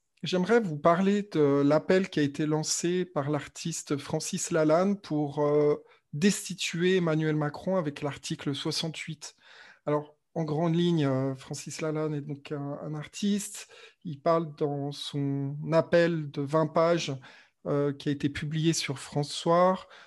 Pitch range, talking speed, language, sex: 145-170 Hz, 140 wpm, French, male